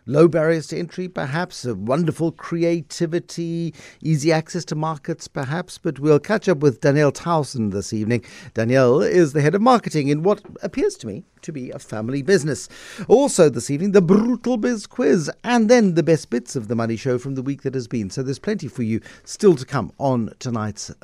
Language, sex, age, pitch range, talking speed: English, male, 50-69, 135-200 Hz, 200 wpm